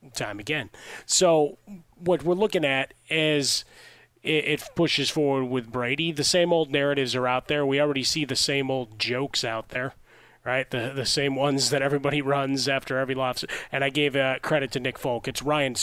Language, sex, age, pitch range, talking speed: English, male, 30-49, 130-150 Hz, 190 wpm